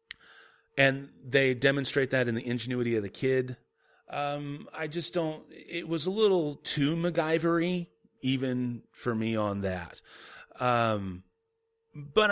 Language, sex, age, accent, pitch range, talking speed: English, male, 30-49, American, 120-165 Hz, 130 wpm